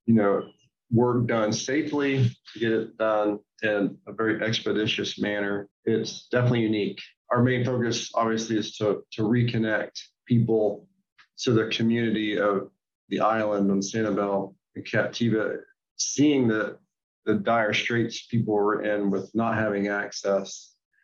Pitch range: 105-120 Hz